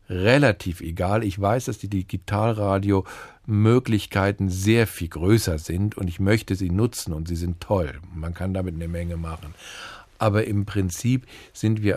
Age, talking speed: 50-69, 155 wpm